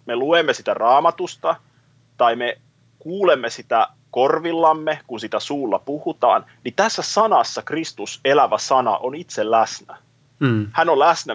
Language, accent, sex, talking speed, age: Finnish, native, male, 130 wpm, 30-49